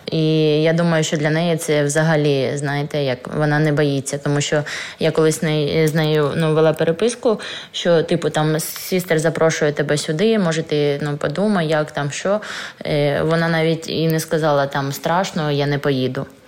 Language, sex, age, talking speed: Ukrainian, female, 20-39, 170 wpm